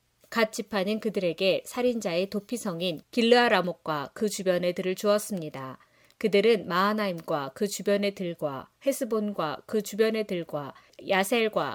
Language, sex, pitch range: Korean, female, 180-215 Hz